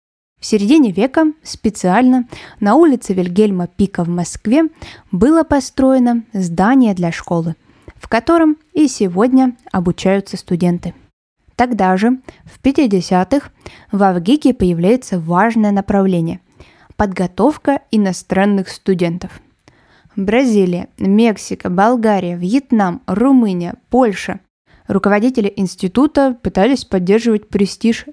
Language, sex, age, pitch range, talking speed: Russian, female, 20-39, 185-245 Hz, 95 wpm